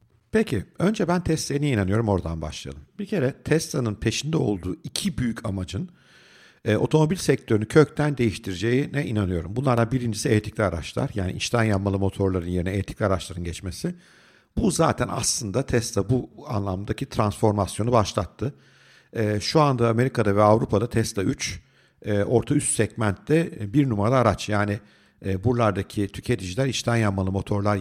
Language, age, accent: Turkish, 50-69, native